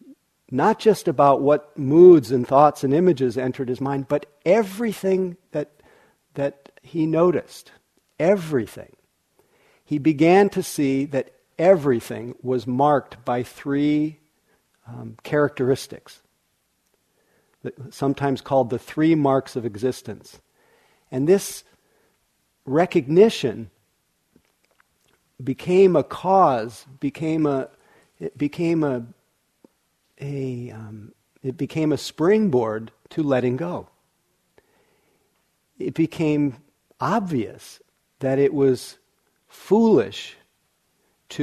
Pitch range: 130-175 Hz